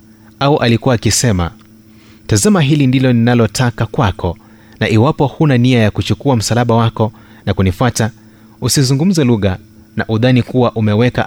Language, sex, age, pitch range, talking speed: Swahili, male, 30-49, 105-130 Hz, 130 wpm